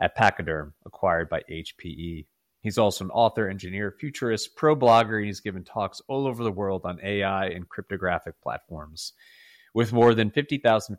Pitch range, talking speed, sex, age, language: 95-115 Hz, 165 wpm, male, 30-49, English